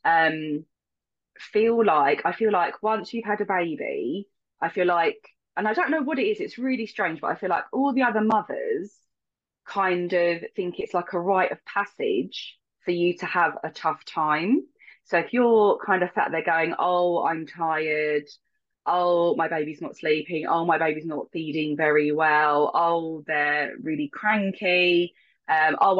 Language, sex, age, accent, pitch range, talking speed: English, female, 20-39, British, 155-210 Hz, 175 wpm